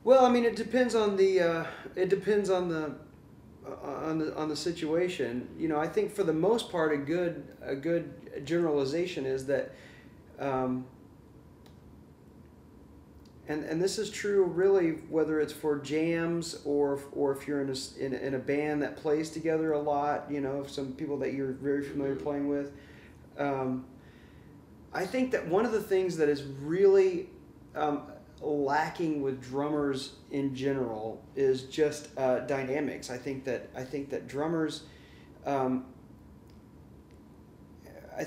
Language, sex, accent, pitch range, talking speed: English, male, American, 135-160 Hz, 155 wpm